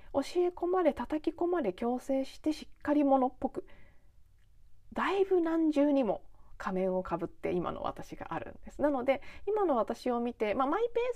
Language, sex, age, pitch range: Japanese, female, 20-39, 200-315 Hz